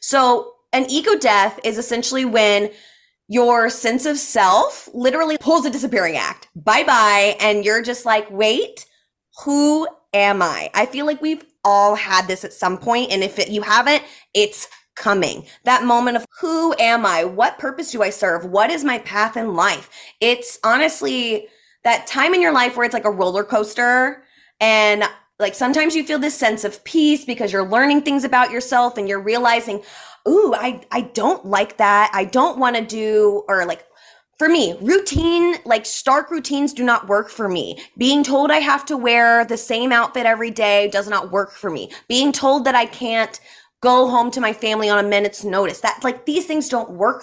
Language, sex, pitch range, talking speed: English, female, 210-285 Hz, 190 wpm